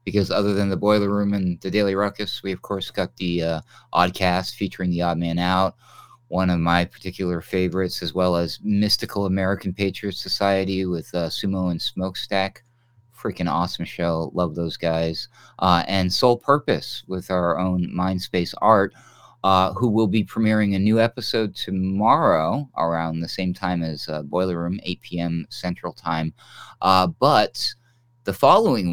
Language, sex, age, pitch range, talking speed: English, male, 30-49, 85-105 Hz, 165 wpm